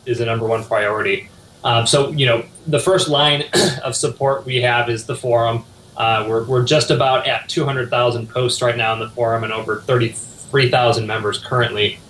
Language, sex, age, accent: English, male, 20-39, American